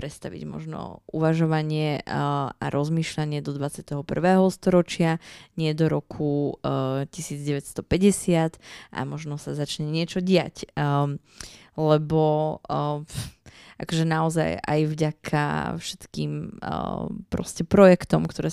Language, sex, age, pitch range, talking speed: Slovak, female, 20-39, 145-170 Hz, 85 wpm